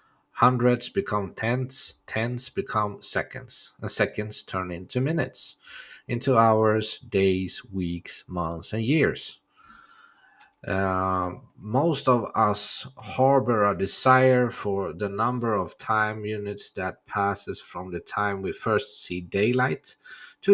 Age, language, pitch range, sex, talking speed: 50-69, English, 100-125 Hz, male, 120 wpm